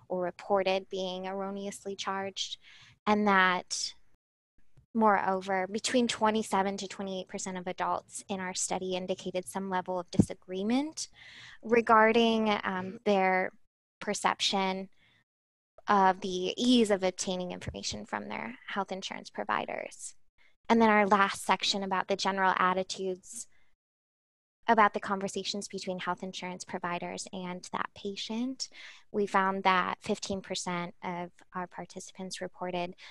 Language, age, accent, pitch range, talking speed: English, 20-39, American, 180-205 Hz, 115 wpm